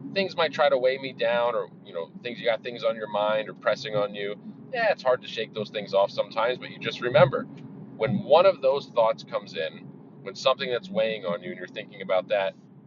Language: English